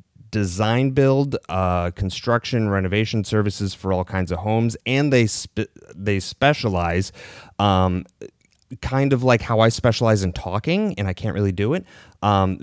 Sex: male